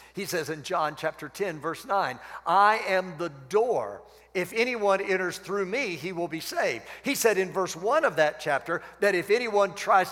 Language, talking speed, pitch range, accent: English, 195 wpm, 180-230 Hz, American